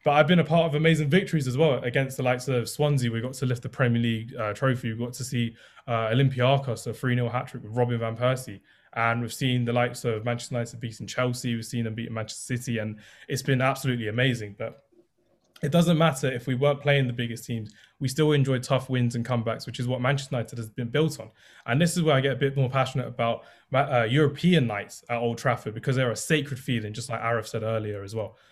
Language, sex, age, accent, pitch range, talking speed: English, male, 20-39, British, 115-140 Hz, 245 wpm